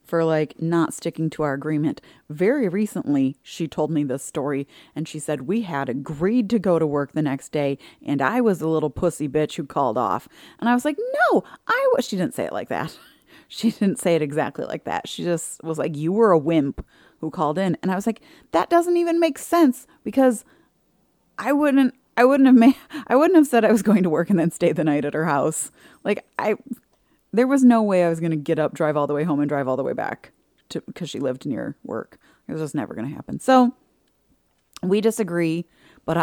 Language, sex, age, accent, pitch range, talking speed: English, female, 30-49, American, 150-215 Hz, 230 wpm